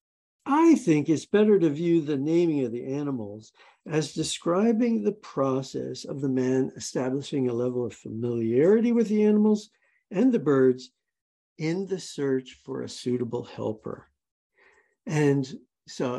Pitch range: 130-190 Hz